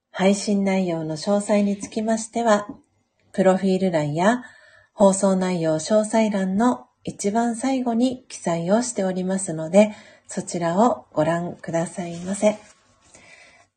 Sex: female